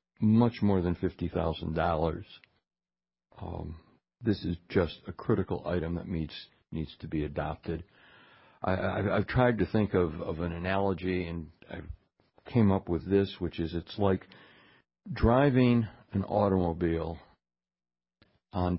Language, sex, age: English, male, 60-79